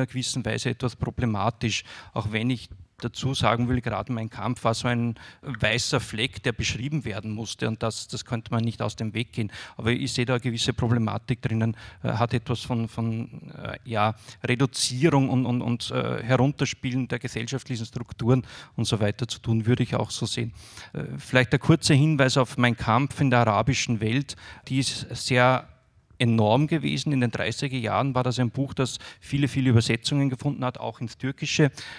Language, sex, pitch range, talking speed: German, male, 115-130 Hz, 180 wpm